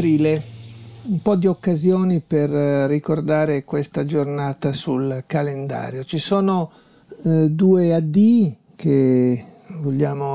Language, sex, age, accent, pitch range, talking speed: Italian, male, 50-69, native, 145-170 Hz, 100 wpm